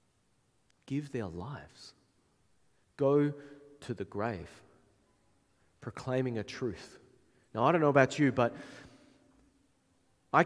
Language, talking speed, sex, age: English, 105 wpm, male, 30-49